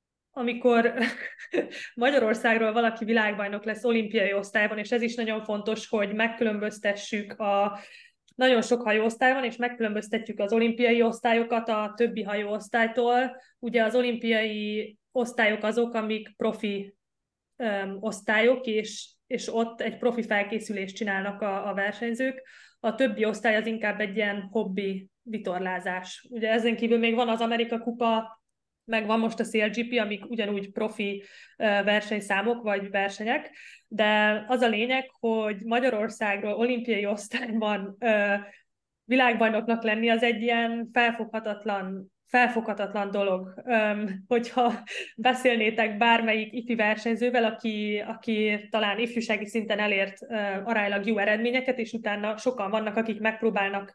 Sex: female